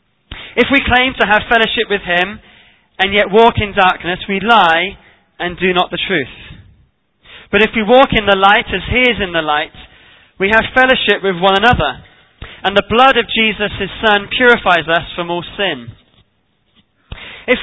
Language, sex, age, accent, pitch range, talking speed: English, male, 20-39, British, 155-220 Hz, 175 wpm